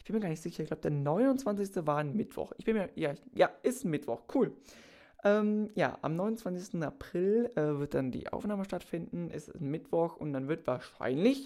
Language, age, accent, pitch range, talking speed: German, 20-39, German, 140-190 Hz, 220 wpm